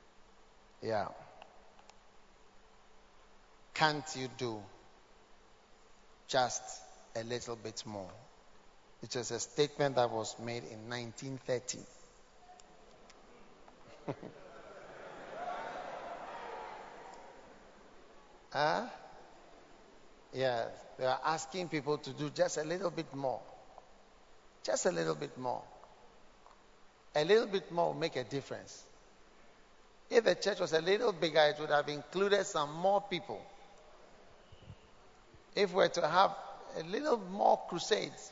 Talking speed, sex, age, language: 105 wpm, male, 50-69, English